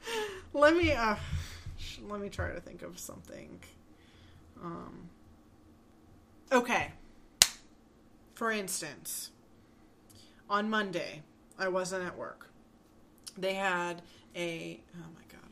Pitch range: 150-185 Hz